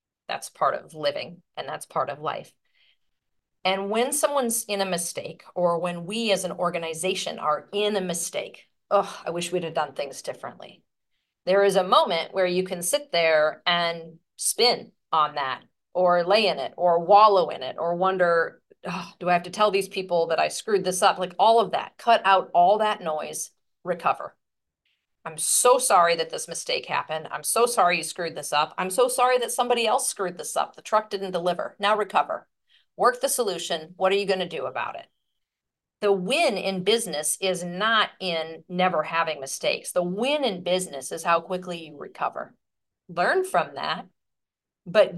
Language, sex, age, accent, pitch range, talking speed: English, female, 40-59, American, 170-210 Hz, 185 wpm